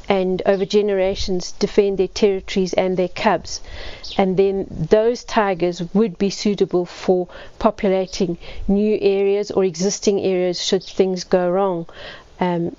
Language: English